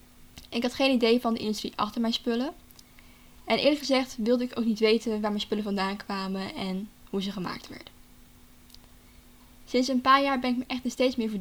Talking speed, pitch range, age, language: 210 wpm, 210-245 Hz, 10-29, Dutch